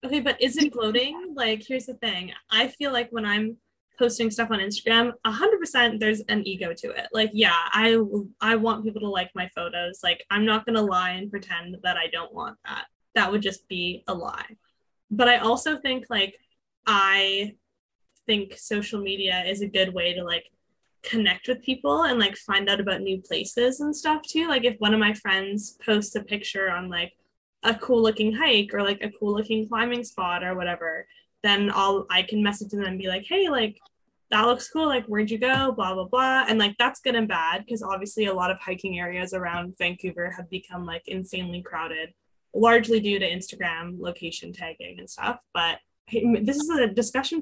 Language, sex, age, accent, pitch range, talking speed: English, female, 10-29, American, 185-230 Hz, 205 wpm